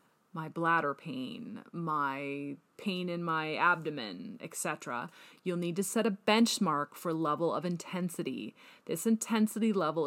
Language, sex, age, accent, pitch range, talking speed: English, female, 30-49, American, 160-205 Hz, 130 wpm